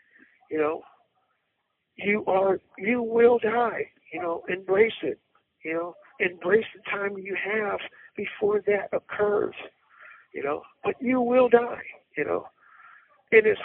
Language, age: English, 60-79